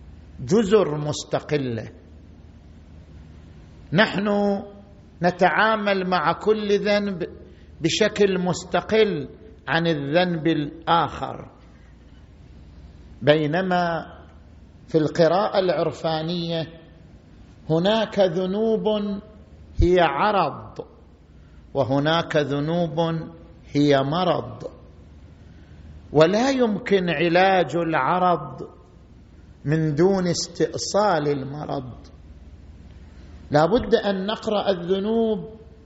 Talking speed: 60 wpm